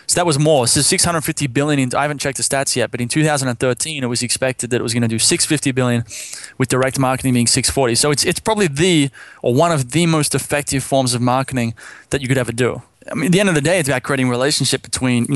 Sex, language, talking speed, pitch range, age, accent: male, English, 260 wpm, 125-150 Hz, 20-39, Australian